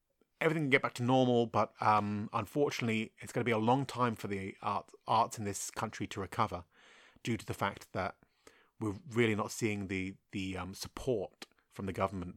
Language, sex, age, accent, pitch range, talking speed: English, male, 30-49, British, 100-130 Hz, 200 wpm